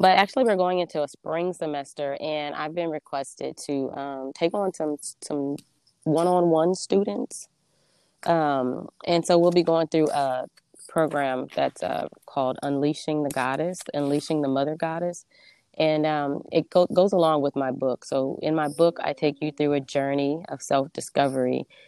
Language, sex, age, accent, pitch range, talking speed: English, female, 20-39, American, 135-155 Hz, 165 wpm